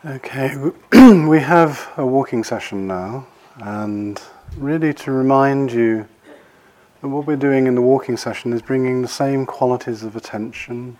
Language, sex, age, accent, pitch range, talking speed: English, male, 40-59, British, 105-125 Hz, 145 wpm